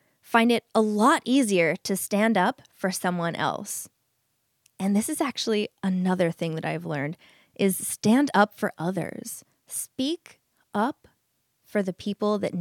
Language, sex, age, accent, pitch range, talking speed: English, female, 20-39, American, 165-215 Hz, 150 wpm